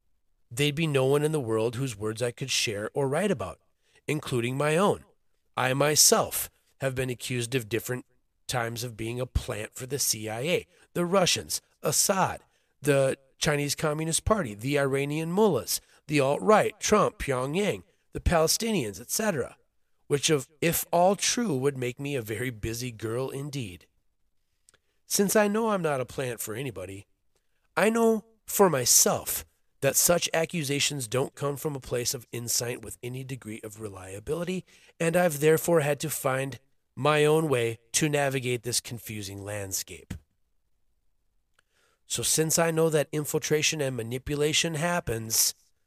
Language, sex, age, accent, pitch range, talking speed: English, male, 30-49, American, 120-160 Hz, 150 wpm